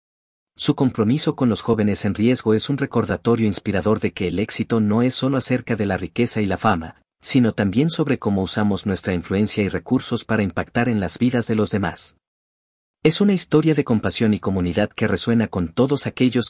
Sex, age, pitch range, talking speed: male, 50-69, 100-125 Hz, 195 wpm